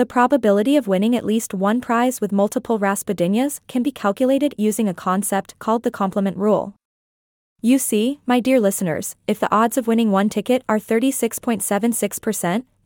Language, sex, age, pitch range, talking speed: English, female, 20-39, 205-245 Hz, 165 wpm